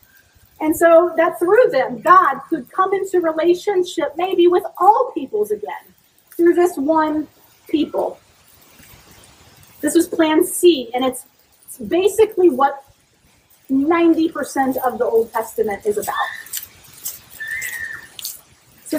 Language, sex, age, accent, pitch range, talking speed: English, female, 30-49, American, 250-360 Hz, 115 wpm